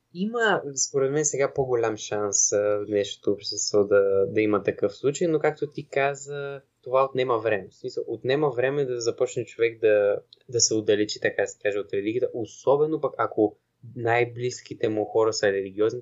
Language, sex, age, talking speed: Bulgarian, male, 20-39, 170 wpm